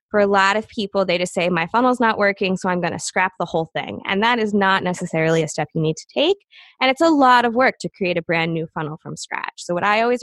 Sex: female